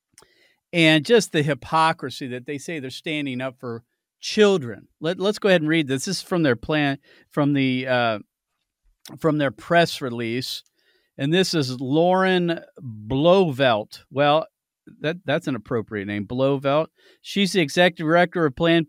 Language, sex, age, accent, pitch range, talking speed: English, male, 40-59, American, 145-190 Hz, 155 wpm